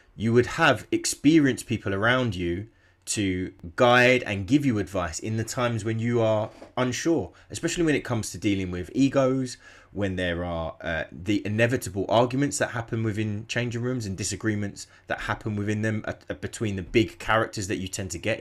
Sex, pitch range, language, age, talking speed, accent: male, 90-120 Hz, English, 20-39, 185 wpm, British